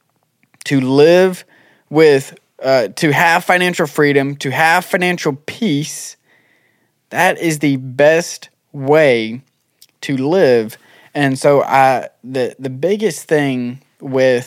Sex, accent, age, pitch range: male, American, 20-39, 120-150 Hz